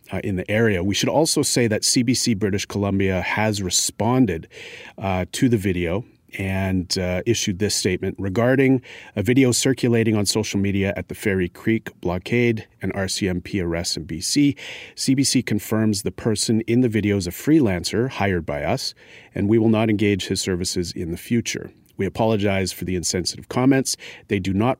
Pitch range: 95-115 Hz